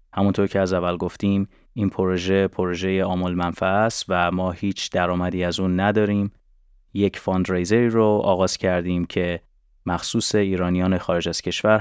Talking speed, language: 140 wpm, Persian